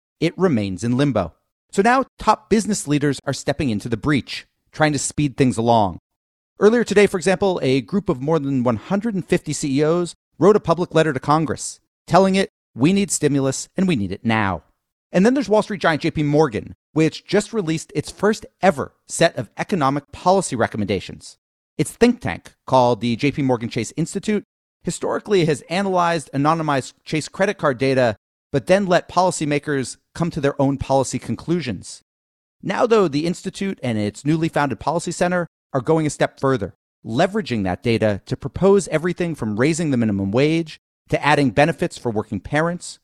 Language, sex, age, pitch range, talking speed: English, male, 40-59, 125-180 Hz, 175 wpm